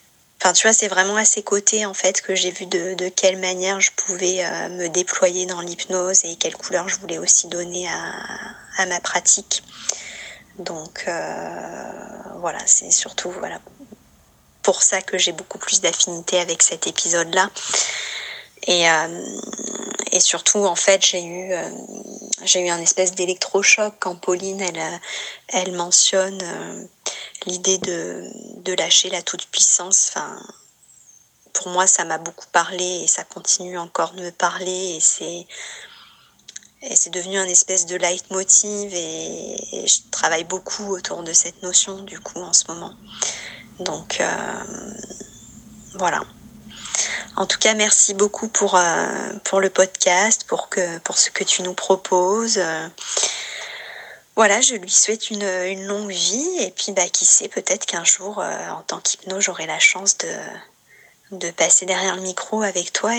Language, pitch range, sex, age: French, 180-200 Hz, female, 20-39